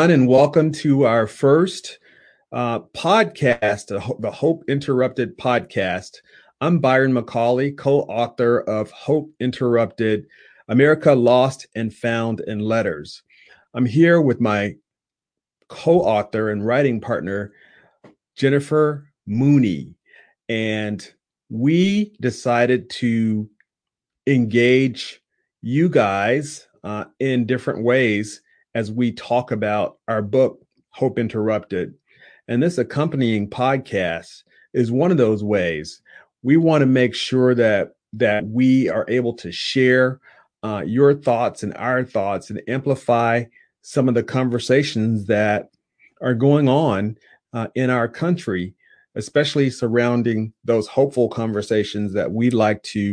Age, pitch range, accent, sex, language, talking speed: 40-59, 110-135 Hz, American, male, English, 115 wpm